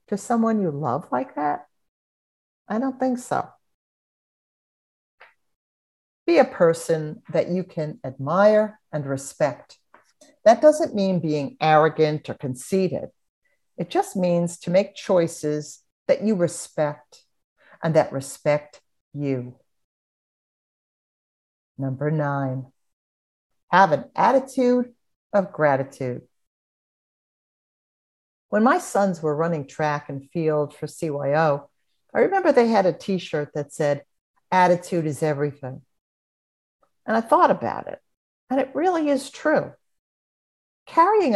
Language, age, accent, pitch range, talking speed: English, 60-79, American, 140-205 Hz, 115 wpm